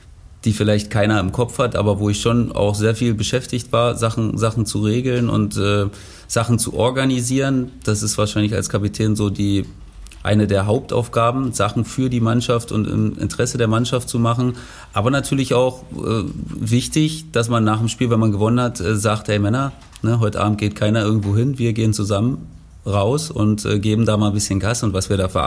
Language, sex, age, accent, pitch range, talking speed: German, male, 30-49, German, 105-120 Hz, 205 wpm